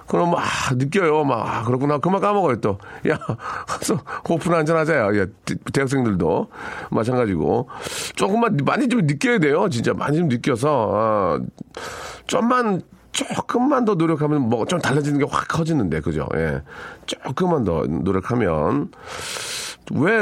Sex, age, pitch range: male, 40-59, 110-165 Hz